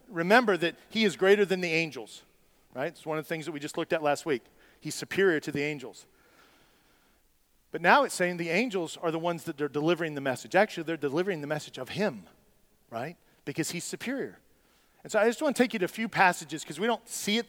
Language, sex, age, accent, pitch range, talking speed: English, male, 40-59, American, 165-215 Hz, 235 wpm